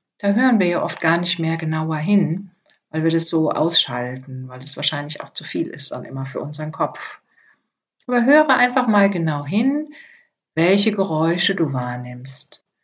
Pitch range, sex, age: 155-205 Hz, female, 60-79